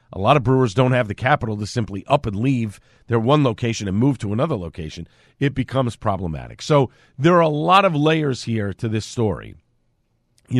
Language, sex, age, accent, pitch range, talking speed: English, male, 50-69, American, 115-165 Hz, 205 wpm